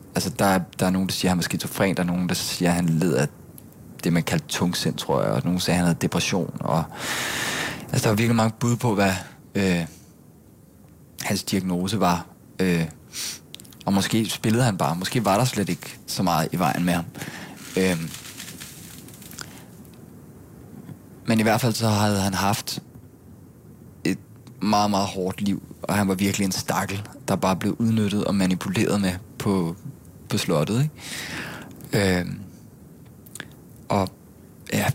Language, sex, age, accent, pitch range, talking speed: Danish, male, 20-39, native, 90-105 Hz, 165 wpm